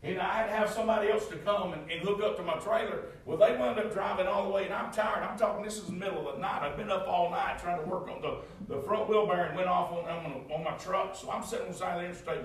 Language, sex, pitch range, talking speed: English, male, 175-245 Hz, 295 wpm